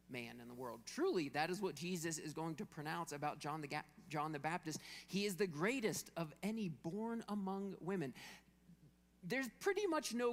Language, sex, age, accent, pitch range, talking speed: English, male, 40-59, American, 145-190 Hz, 185 wpm